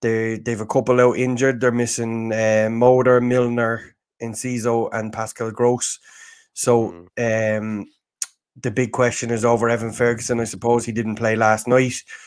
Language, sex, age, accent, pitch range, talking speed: English, male, 20-39, Irish, 110-130 Hz, 150 wpm